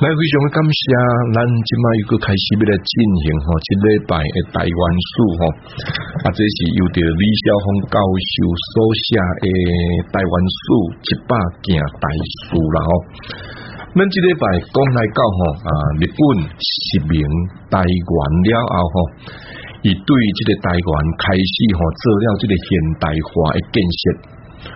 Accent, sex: Malaysian, male